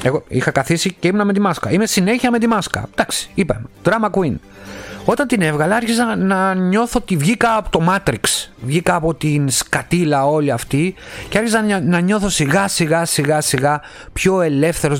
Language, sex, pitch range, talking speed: Greek, male, 125-200 Hz, 165 wpm